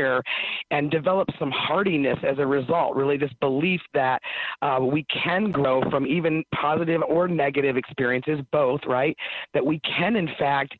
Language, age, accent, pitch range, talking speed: English, 40-59, American, 135-155 Hz, 155 wpm